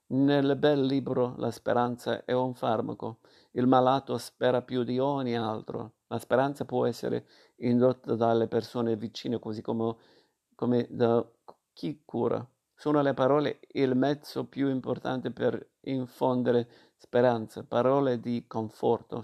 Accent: native